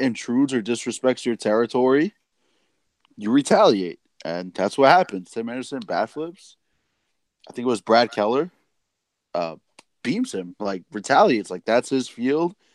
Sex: male